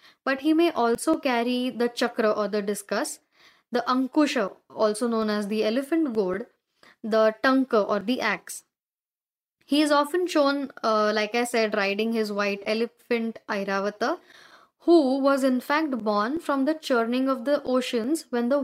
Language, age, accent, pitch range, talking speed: Marathi, 10-29, native, 220-285 Hz, 160 wpm